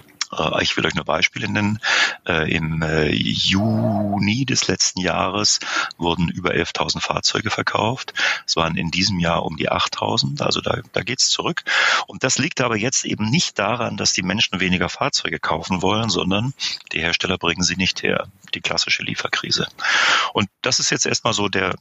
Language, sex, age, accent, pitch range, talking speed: German, male, 40-59, German, 90-115 Hz, 170 wpm